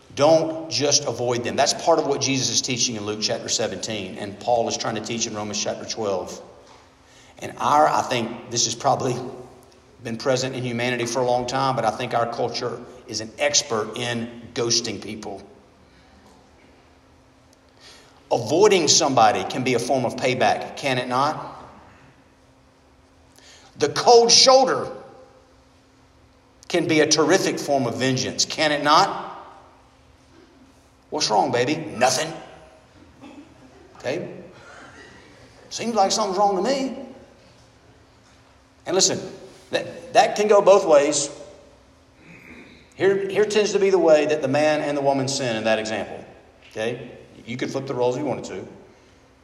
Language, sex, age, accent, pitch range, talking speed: English, male, 50-69, American, 120-200 Hz, 145 wpm